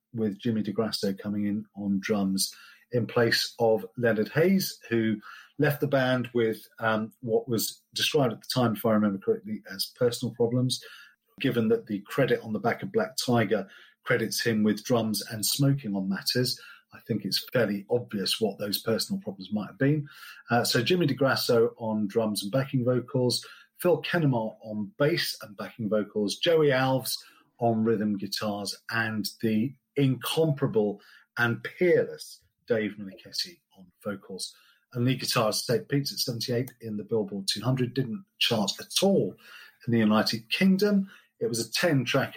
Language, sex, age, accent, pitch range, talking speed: English, male, 40-59, British, 110-150 Hz, 160 wpm